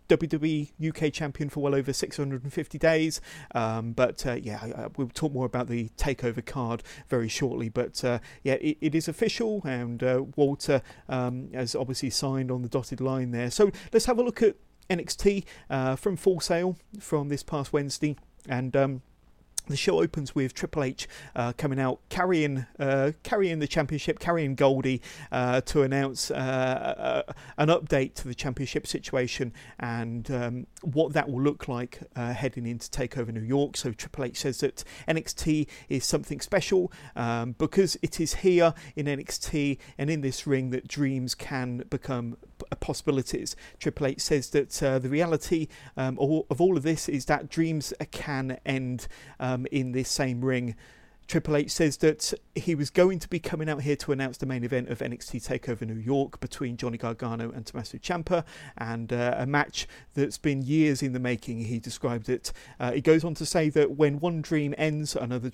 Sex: male